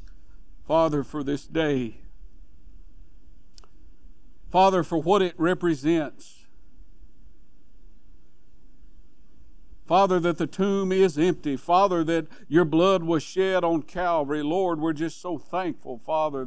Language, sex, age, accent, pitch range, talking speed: English, male, 60-79, American, 150-195 Hz, 105 wpm